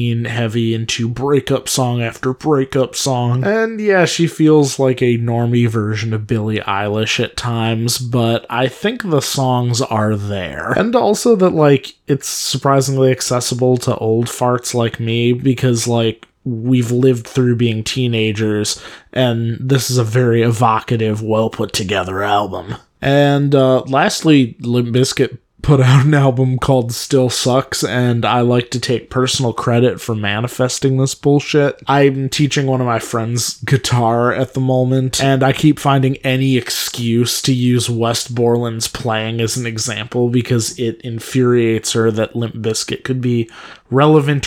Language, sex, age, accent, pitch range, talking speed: English, male, 20-39, American, 115-135 Hz, 150 wpm